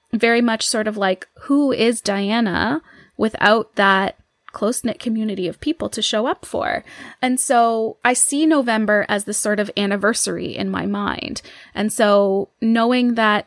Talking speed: 155 wpm